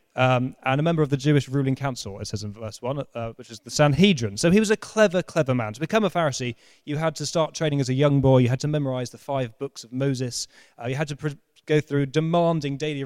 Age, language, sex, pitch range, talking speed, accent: 20-39, English, male, 125-175 Hz, 255 wpm, British